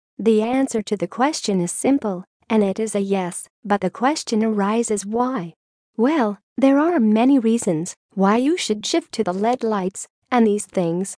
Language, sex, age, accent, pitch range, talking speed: English, female, 40-59, American, 200-240 Hz, 175 wpm